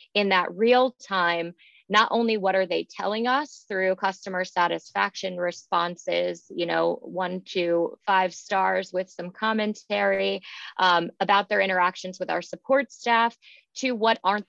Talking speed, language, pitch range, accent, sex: 145 wpm, English, 180-215 Hz, American, female